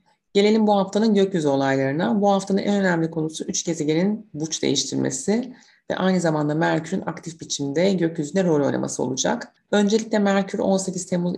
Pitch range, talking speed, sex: 155-190 Hz, 150 wpm, female